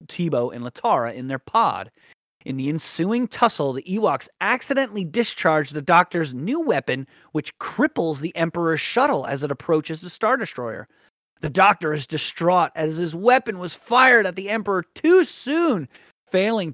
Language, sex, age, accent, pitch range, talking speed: English, male, 30-49, American, 140-215 Hz, 160 wpm